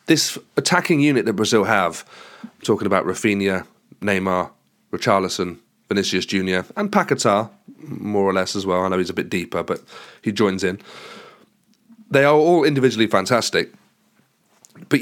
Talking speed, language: 145 wpm, English